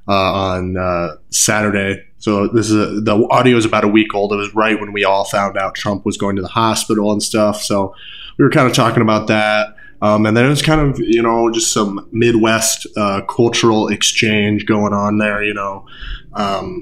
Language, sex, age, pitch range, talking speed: English, male, 20-39, 100-115 Hz, 210 wpm